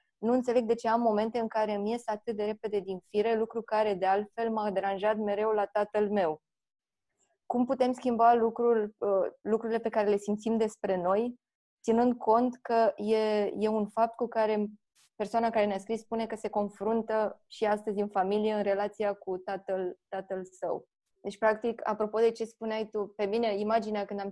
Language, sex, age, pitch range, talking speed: Romanian, female, 20-39, 205-230 Hz, 185 wpm